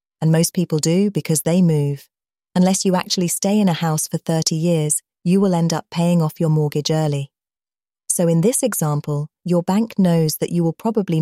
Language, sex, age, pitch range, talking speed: English, female, 30-49, 155-185 Hz, 200 wpm